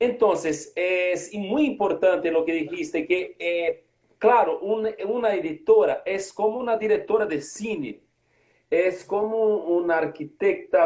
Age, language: 40-59, Portuguese